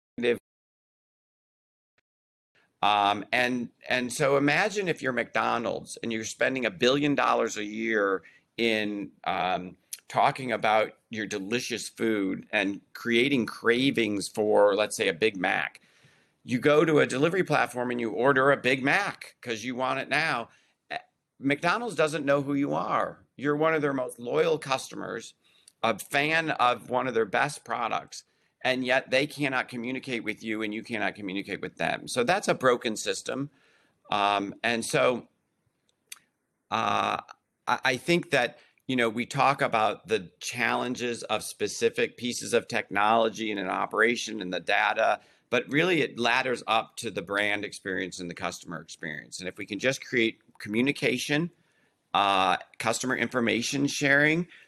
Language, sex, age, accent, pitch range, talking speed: English, male, 40-59, American, 110-140 Hz, 150 wpm